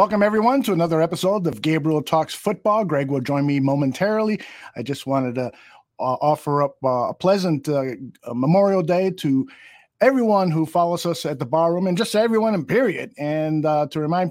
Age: 50-69